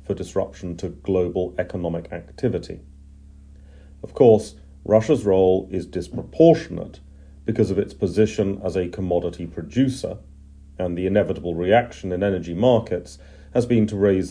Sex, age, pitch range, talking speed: male, 40-59, 75-100 Hz, 130 wpm